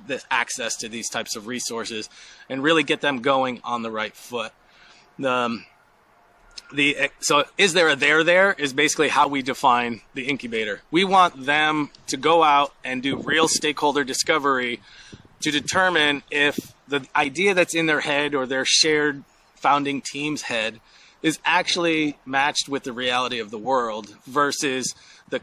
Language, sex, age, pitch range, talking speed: English, male, 30-49, 125-155 Hz, 160 wpm